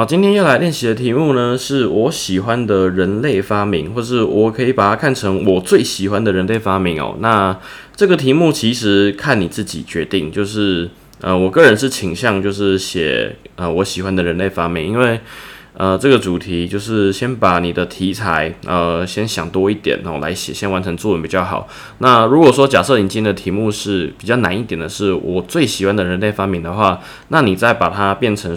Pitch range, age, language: 95-125 Hz, 20-39, Chinese